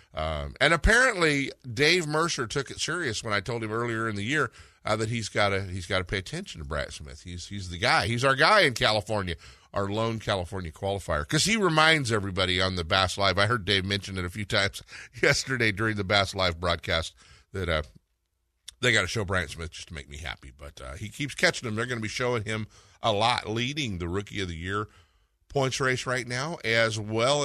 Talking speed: 220 wpm